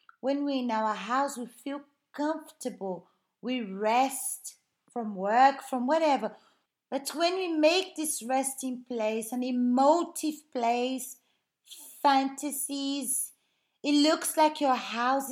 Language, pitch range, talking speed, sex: Portuguese, 235-300 Hz, 120 wpm, female